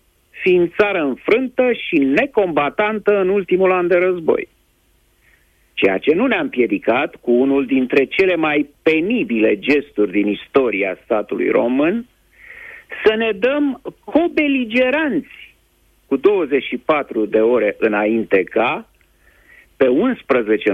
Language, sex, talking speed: Romanian, male, 110 wpm